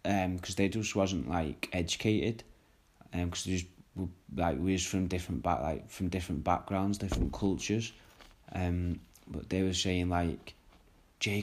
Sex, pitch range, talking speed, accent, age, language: male, 85-95 Hz, 150 wpm, British, 20-39, English